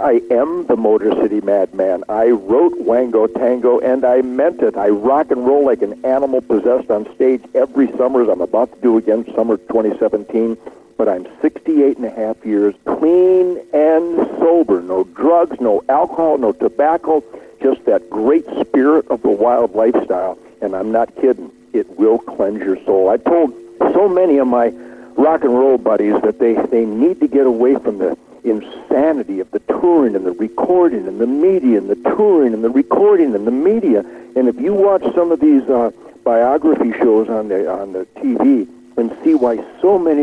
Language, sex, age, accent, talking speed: English, male, 60-79, American, 185 wpm